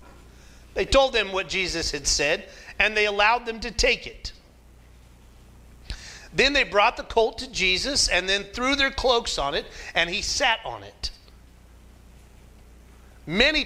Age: 40-59